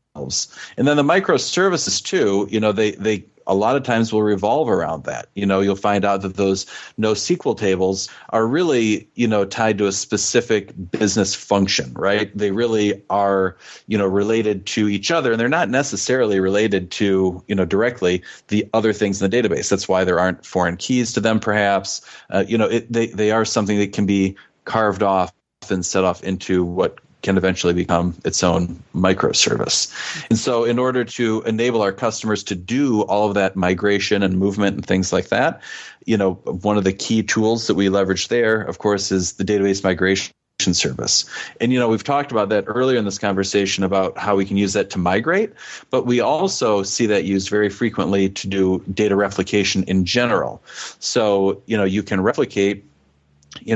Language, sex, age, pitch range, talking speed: English, male, 40-59, 95-110 Hz, 190 wpm